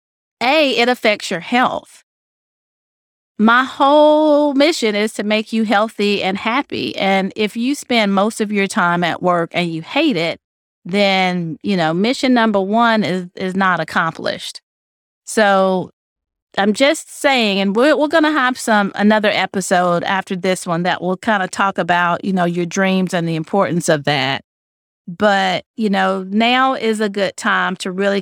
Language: English